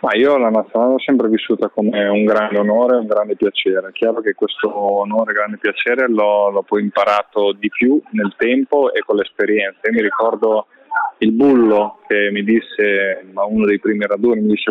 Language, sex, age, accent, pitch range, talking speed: Italian, male, 20-39, native, 105-145 Hz, 195 wpm